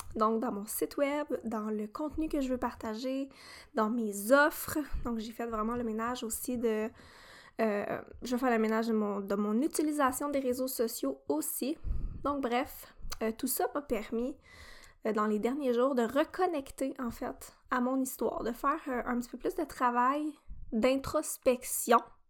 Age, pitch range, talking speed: 20-39, 230-275 Hz, 180 wpm